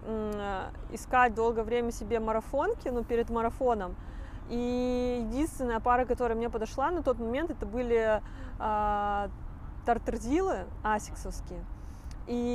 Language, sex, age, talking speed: Russian, female, 20-39, 110 wpm